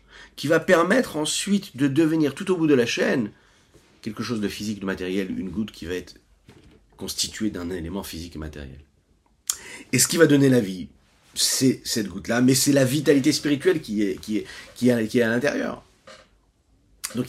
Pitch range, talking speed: 95-150 Hz, 185 wpm